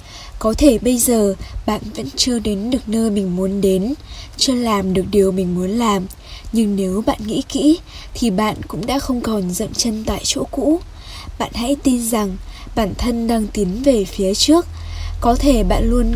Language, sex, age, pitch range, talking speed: Vietnamese, female, 10-29, 195-250 Hz, 190 wpm